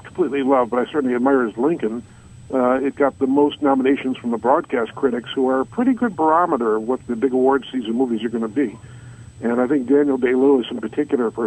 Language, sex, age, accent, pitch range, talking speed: English, male, 50-69, American, 120-140 Hz, 220 wpm